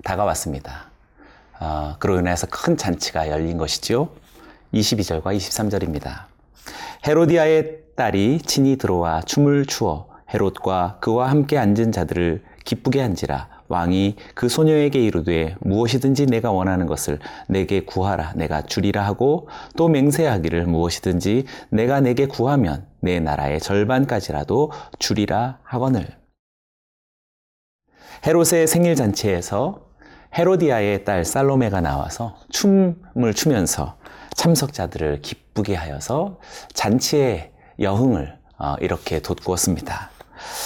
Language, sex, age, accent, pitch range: Korean, male, 30-49, native, 85-140 Hz